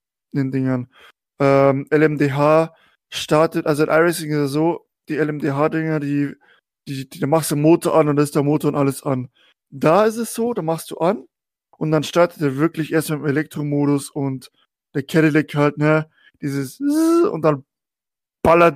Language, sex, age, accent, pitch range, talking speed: German, male, 20-39, German, 140-165 Hz, 180 wpm